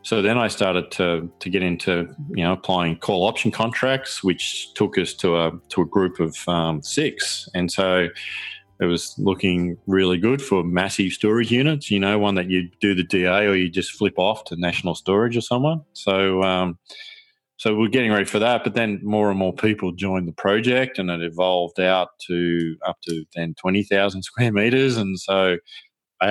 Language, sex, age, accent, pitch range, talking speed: English, male, 20-39, Australian, 90-110 Hz, 195 wpm